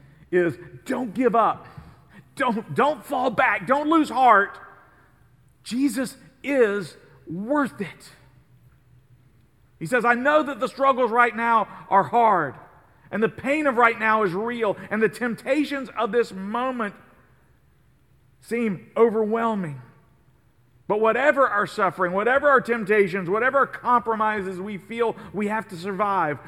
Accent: American